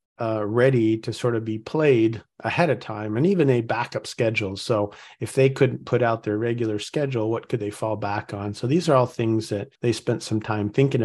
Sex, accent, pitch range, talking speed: male, American, 105-135 Hz, 225 wpm